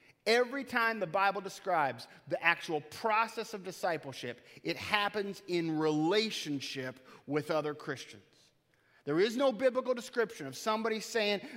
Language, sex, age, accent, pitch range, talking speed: English, male, 30-49, American, 205-260 Hz, 130 wpm